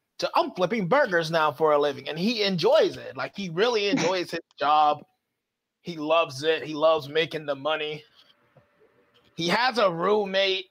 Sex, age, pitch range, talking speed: male, 30-49, 155-225 Hz, 165 wpm